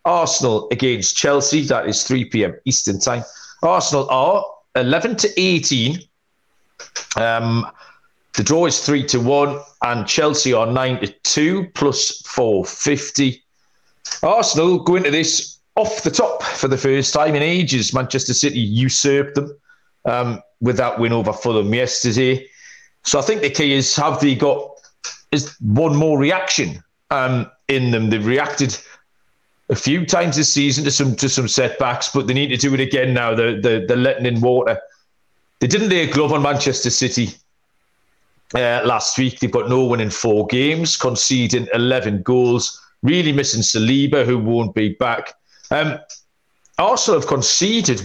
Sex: male